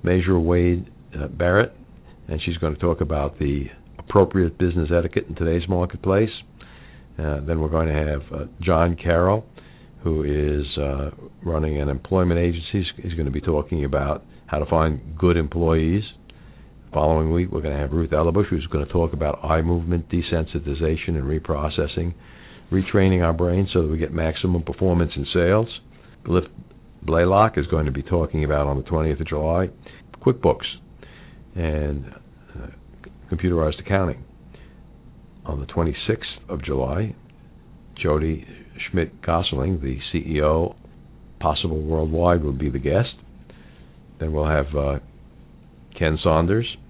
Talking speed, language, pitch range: 145 wpm, English, 75-90 Hz